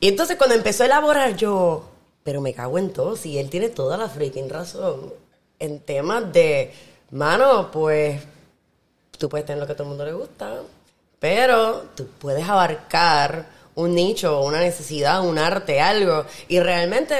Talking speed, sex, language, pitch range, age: 170 wpm, female, Spanish, 160-210 Hz, 20-39